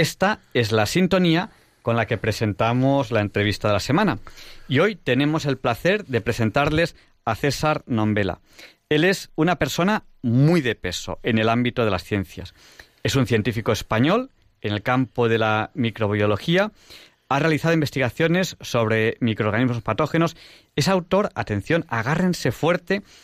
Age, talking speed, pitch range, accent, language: 40-59, 145 wpm, 110-160 Hz, Spanish, Spanish